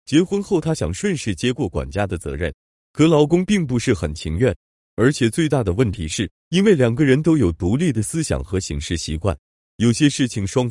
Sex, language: male, Chinese